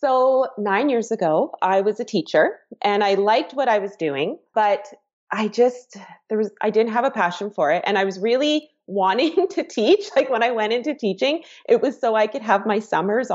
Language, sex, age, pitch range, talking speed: English, female, 20-39, 185-245 Hz, 215 wpm